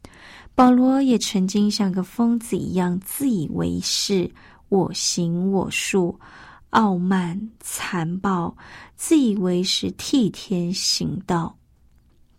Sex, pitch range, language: female, 180-235 Hz, Chinese